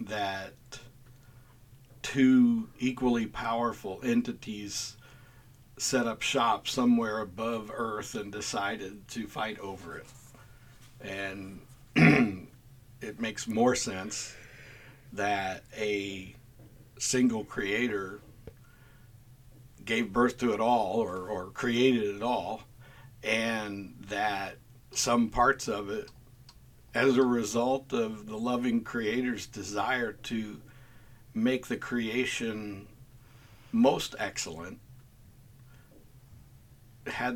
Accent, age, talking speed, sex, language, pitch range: American, 60-79, 90 wpm, male, English, 110-130 Hz